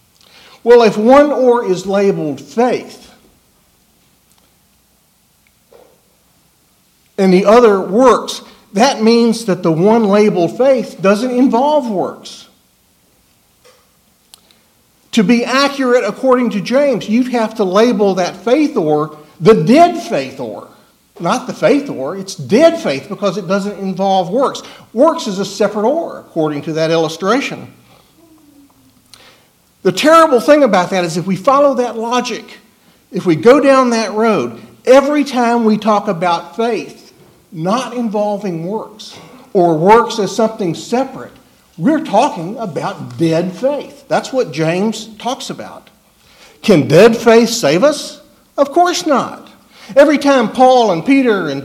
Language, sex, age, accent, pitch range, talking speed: English, male, 60-79, American, 195-260 Hz, 130 wpm